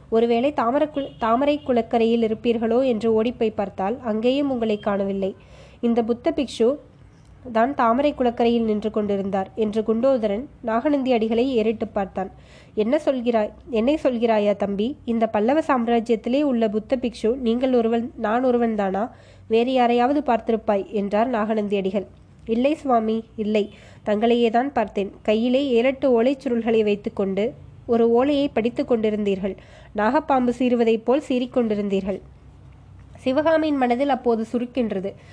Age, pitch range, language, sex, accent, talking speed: 20-39, 215-255 Hz, Tamil, female, native, 120 wpm